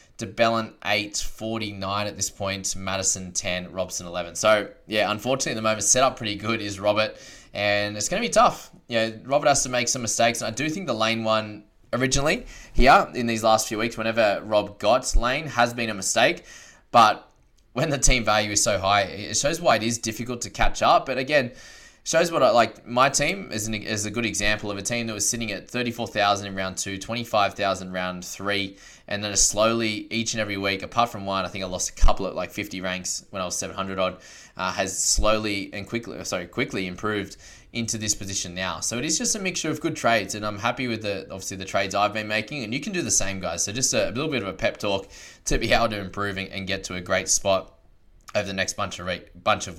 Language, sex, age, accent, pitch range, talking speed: English, male, 20-39, Australian, 95-115 Hz, 240 wpm